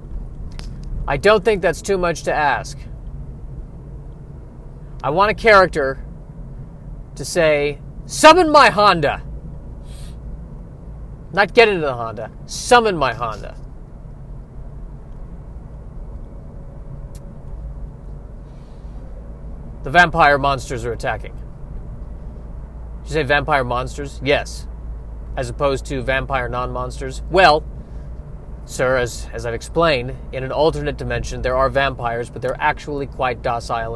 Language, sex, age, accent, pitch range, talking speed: English, male, 40-59, American, 120-160 Hz, 100 wpm